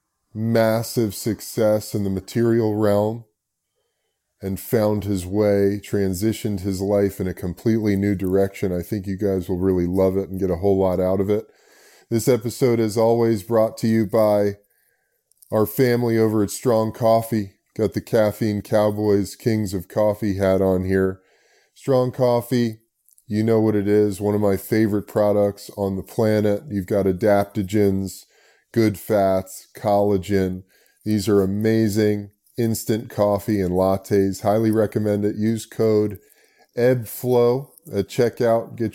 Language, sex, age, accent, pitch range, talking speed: English, male, 20-39, American, 100-115 Hz, 145 wpm